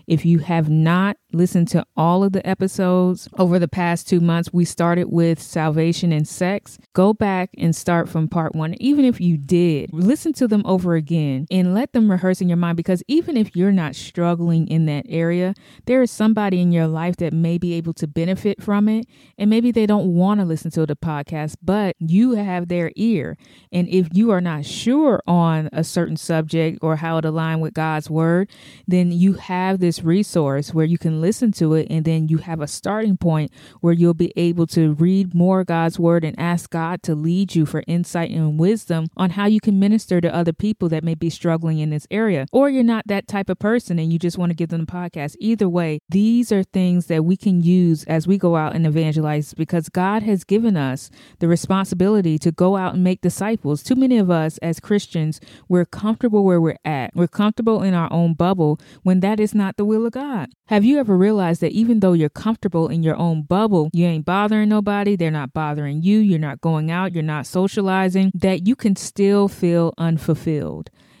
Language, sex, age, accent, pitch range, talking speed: English, female, 20-39, American, 160-195 Hz, 215 wpm